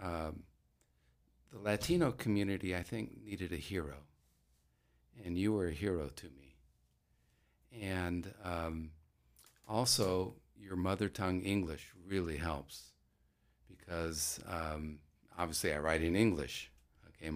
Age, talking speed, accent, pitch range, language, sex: 50-69, 115 wpm, American, 75-90 Hz, English, male